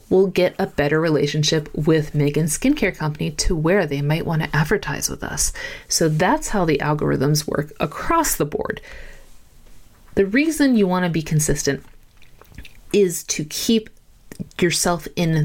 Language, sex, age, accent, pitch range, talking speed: English, female, 30-49, American, 150-205 Hz, 150 wpm